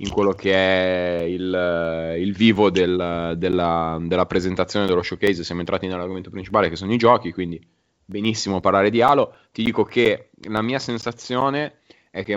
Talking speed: 160 wpm